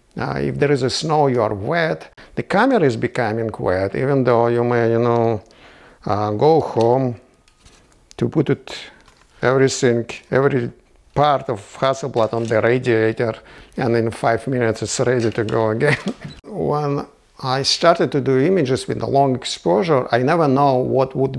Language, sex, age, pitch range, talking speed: English, male, 50-69, 120-145 Hz, 165 wpm